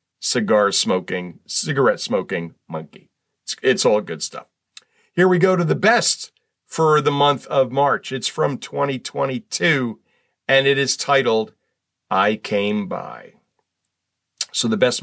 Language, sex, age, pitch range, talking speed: English, male, 50-69, 125-165 Hz, 135 wpm